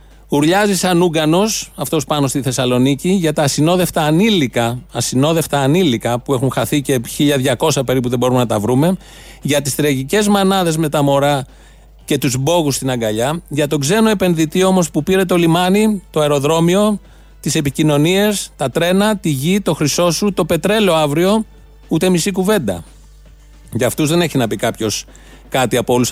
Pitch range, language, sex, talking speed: 135-175 Hz, Greek, male, 165 wpm